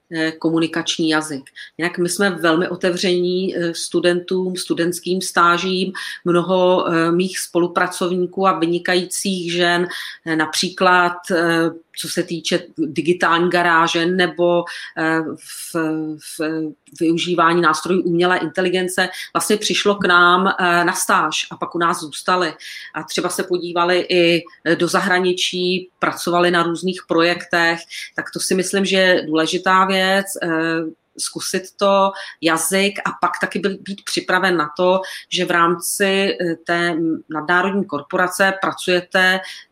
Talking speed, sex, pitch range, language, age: 110 wpm, female, 170-185 Hz, Czech, 40-59